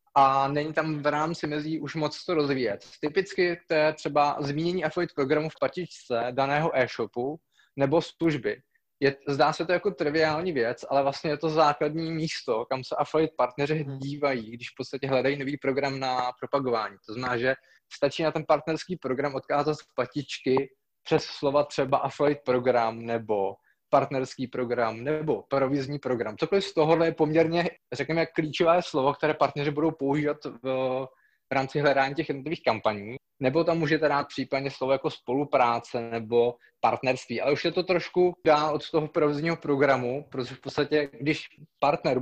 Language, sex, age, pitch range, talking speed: Czech, male, 20-39, 135-160 Hz, 160 wpm